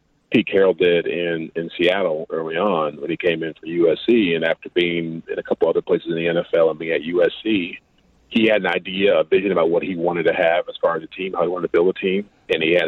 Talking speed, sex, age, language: 260 wpm, male, 40-59, English